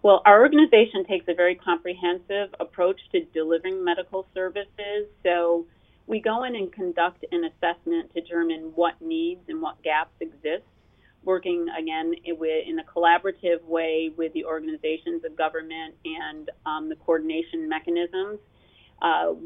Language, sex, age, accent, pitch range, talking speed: English, female, 40-59, American, 160-190 Hz, 140 wpm